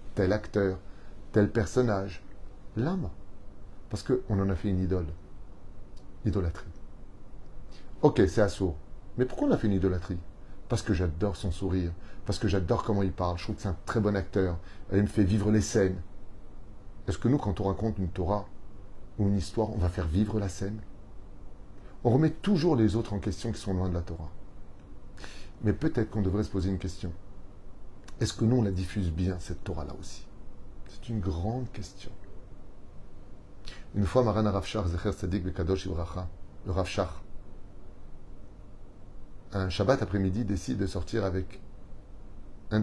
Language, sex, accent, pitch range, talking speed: French, male, French, 95-105 Hz, 160 wpm